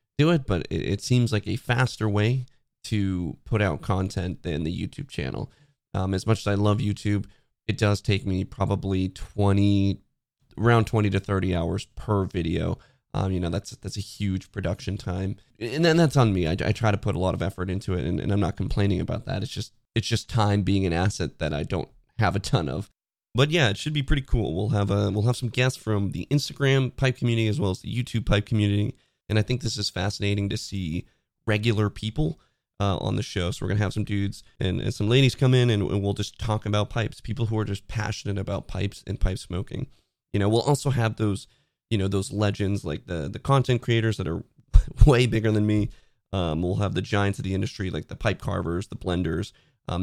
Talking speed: 230 wpm